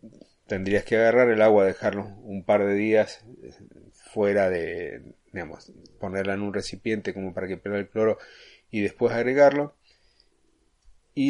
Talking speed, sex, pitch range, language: 145 wpm, male, 100-120 Hz, Spanish